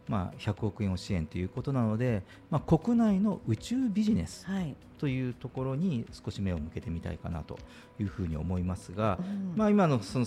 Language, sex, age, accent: Japanese, male, 40-59, native